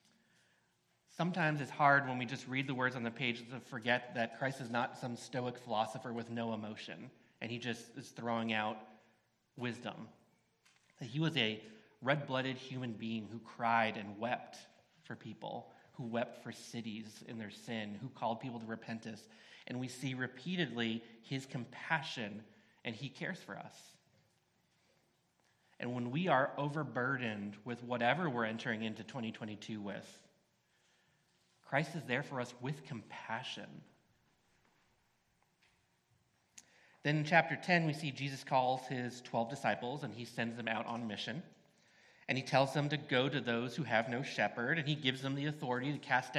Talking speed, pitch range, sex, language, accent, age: 160 wpm, 115-145 Hz, male, English, American, 30-49